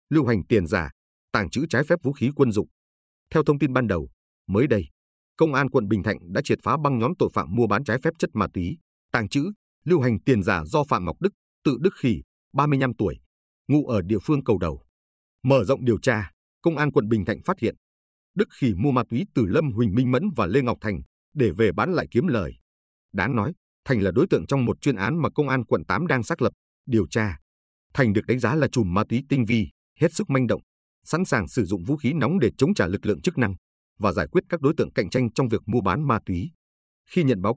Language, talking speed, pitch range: Vietnamese, 250 wpm, 90-140 Hz